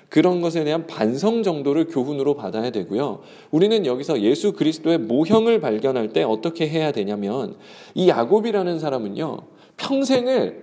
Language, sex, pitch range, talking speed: English, male, 140-215 Hz, 125 wpm